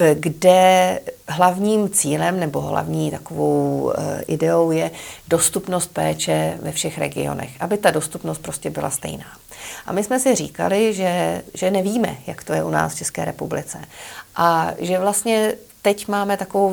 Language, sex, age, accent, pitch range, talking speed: Czech, female, 40-59, native, 145-195 Hz, 145 wpm